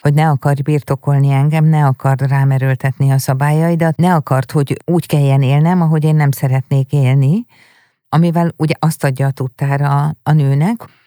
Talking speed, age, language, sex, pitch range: 155 wpm, 50-69, Hungarian, female, 140-165 Hz